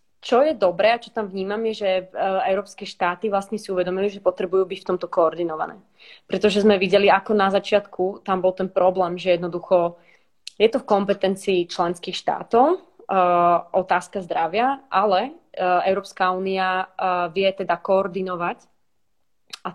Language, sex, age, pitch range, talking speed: Slovak, female, 20-39, 180-200 Hz, 145 wpm